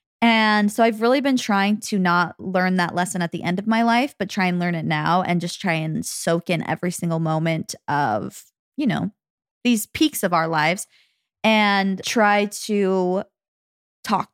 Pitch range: 180-225 Hz